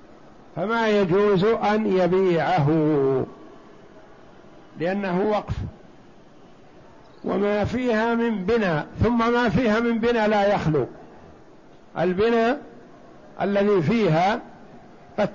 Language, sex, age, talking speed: Arabic, male, 60-79, 80 wpm